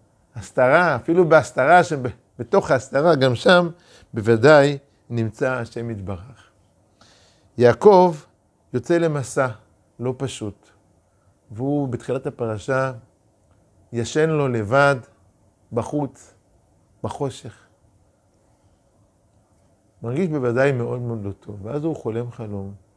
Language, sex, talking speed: Hebrew, male, 90 wpm